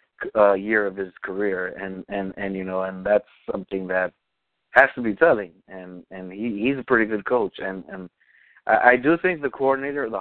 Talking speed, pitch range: 205 wpm, 95-115 Hz